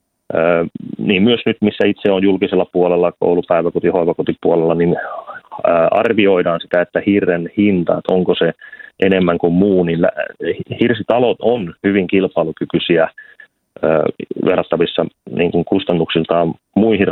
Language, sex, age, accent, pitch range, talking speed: Finnish, male, 30-49, native, 85-100 Hz, 105 wpm